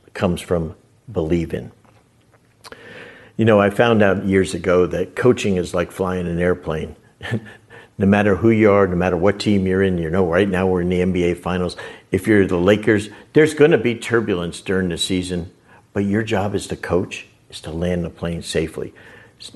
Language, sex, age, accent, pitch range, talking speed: English, male, 50-69, American, 90-115 Hz, 190 wpm